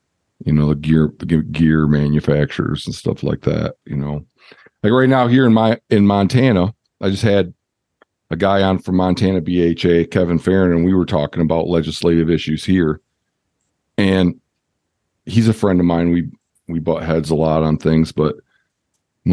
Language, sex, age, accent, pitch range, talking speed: English, male, 50-69, American, 85-125 Hz, 175 wpm